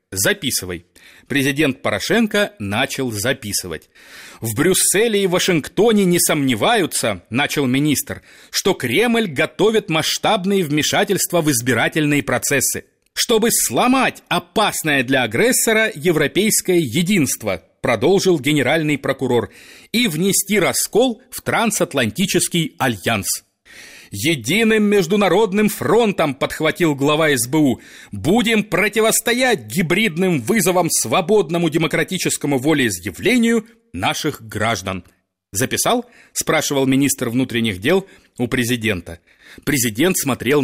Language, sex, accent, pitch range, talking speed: Russian, male, native, 120-190 Hz, 90 wpm